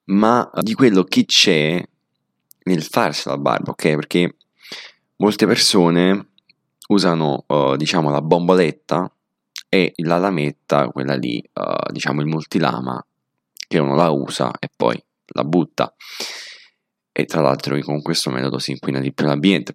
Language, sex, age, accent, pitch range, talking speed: Italian, male, 20-39, native, 70-85 Hz, 135 wpm